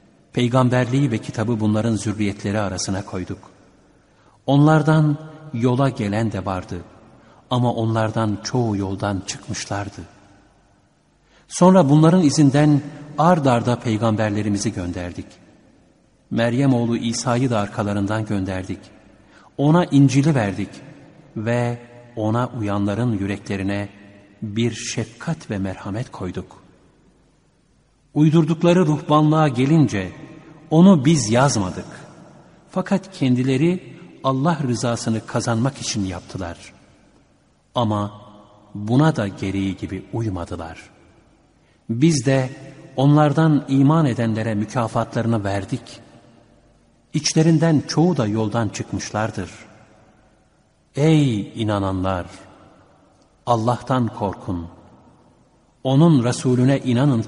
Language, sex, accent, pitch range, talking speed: Turkish, male, native, 100-140 Hz, 85 wpm